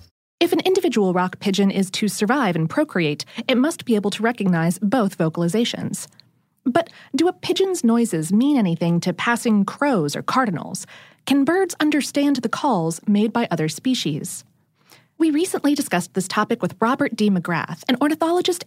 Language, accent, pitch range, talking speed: English, American, 185-275 Hz, 160 wpm